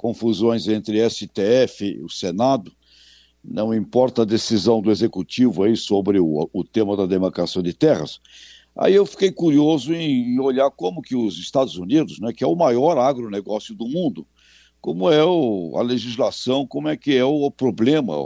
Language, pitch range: Portuguese, 105-140 Hz